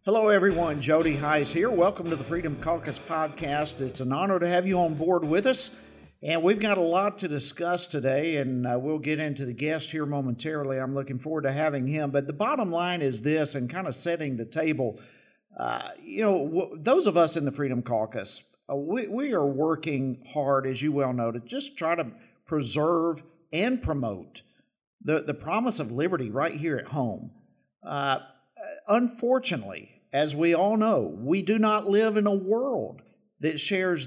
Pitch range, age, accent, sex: 145-180 Hz, 50-69, American, male